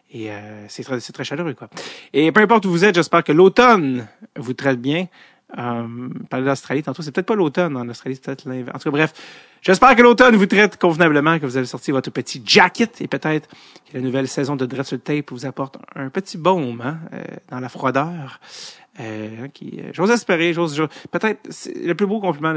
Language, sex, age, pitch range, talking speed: French, male, 30-49, 130-175 Hz, 215 wpm